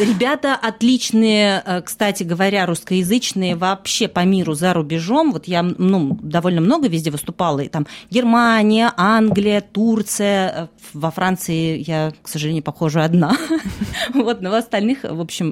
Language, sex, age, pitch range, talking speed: Russian, female, 30-49, 150-210 Hz, 130 wpm